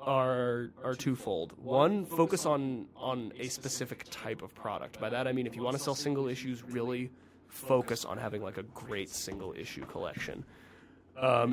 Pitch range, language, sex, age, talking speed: 120-145 Hz, English, male, 30-49, 175 wpm